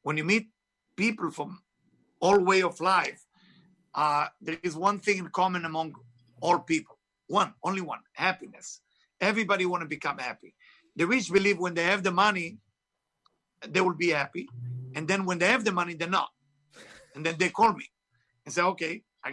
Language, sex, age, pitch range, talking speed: English, male, 50-69, 170-205 Hz, 180 wpm